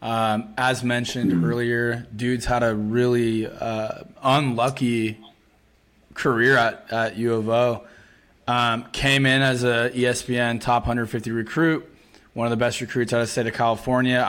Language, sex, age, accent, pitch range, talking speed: English, male, 20-39, American, 115-130 Hz, 150 wpm